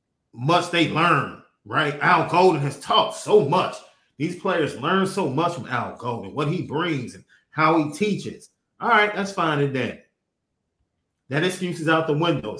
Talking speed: 170 wpm